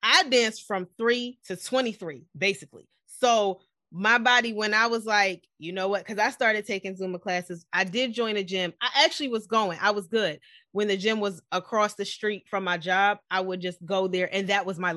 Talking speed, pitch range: 215 wpm, 185-230 Hz